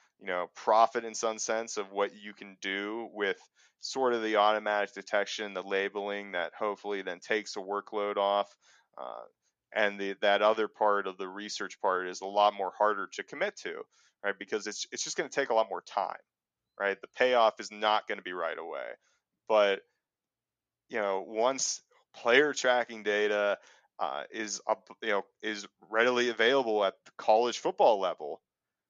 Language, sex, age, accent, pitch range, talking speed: English, male, 30-49, American, 100-125 Hz, 180 wpm